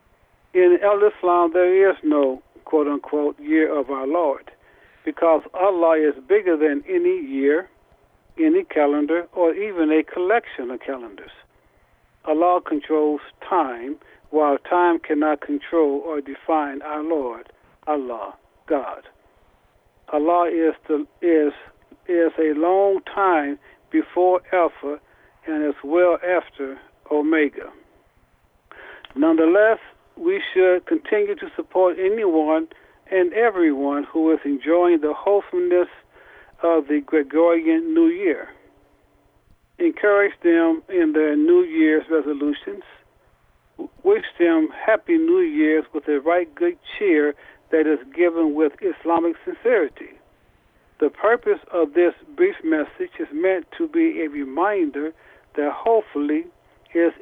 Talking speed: 115 wpm